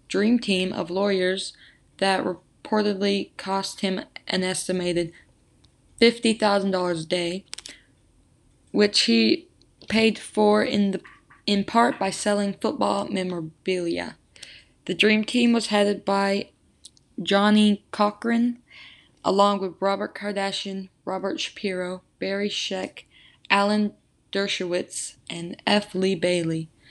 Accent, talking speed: American, 105 wpm